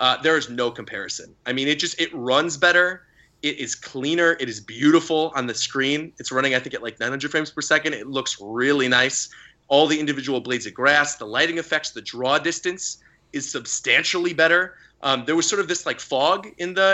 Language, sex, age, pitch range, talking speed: English, male, 30-49, 120-160 Hz, 215 wpm